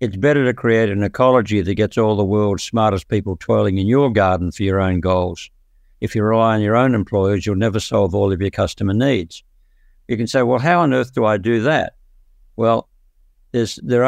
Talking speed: 210 wpm